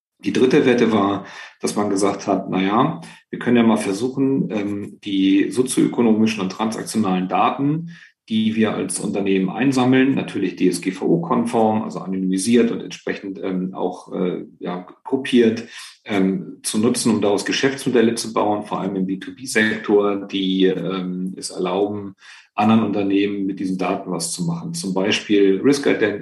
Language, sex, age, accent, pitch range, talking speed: German, male, 40-59, German, 95-110 Hz, 130 wpm